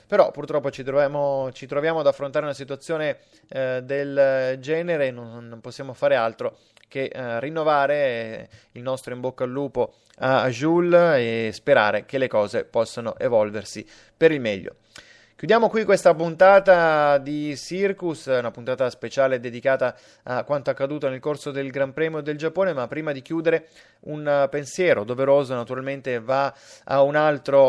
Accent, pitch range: native, 120-145 Hz